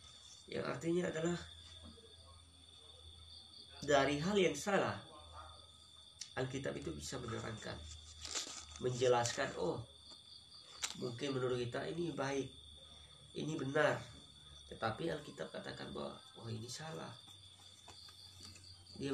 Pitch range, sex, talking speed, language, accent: 80-125 Hz, male, 90 wpm, Indonesian, native